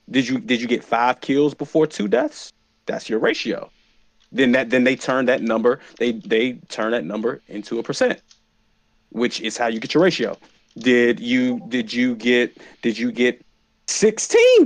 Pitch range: 125-180 Hz